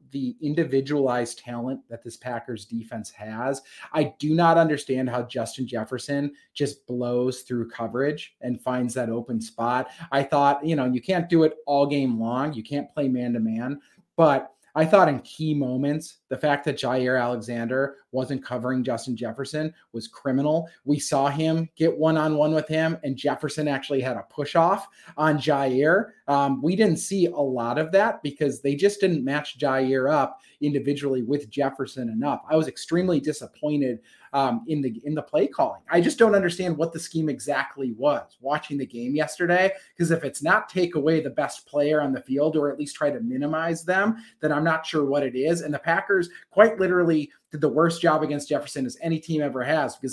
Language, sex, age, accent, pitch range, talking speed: English, male, 30-49, American, 130-160 Hz, 190 wpm